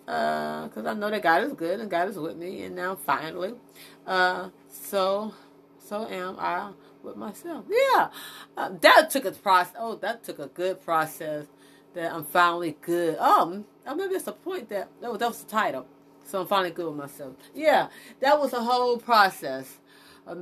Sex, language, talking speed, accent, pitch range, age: female, English, 190 wpm, American, 150-235 Hz, 30-49